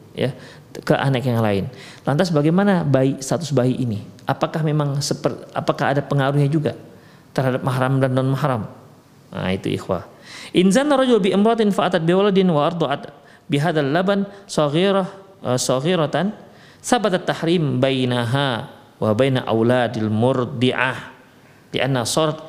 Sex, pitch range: male, 130-185 Hz